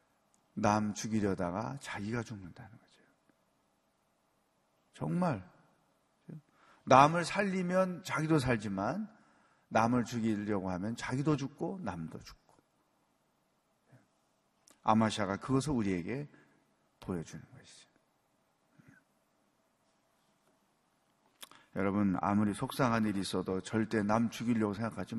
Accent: native